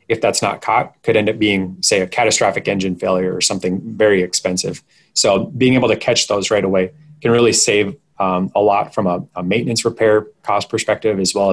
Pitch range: 95-115 Hz